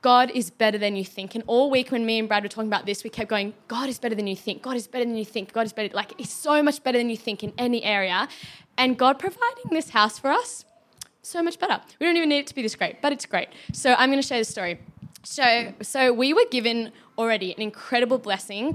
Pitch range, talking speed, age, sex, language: 210-255 Hz, 270 wpm, 20-39, female, English